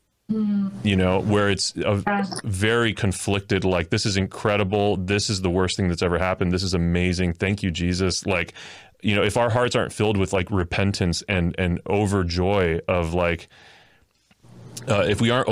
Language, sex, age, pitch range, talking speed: English, male, 30-49, 90-105 Hz, 175 wpm